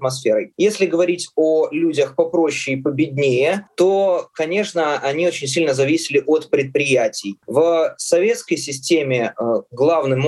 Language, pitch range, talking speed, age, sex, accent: Russian, 130-190 Hz, 110 wpm, 20-39, male, native